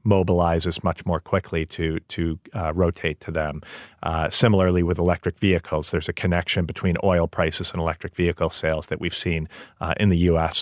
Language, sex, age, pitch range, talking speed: English, male, 40-59, 85-105 Hz, 180 wpm